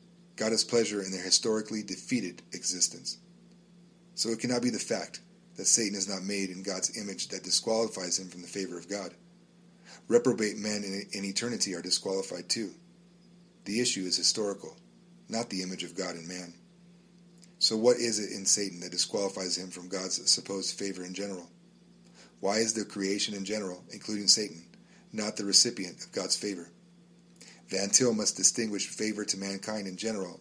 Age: 30-49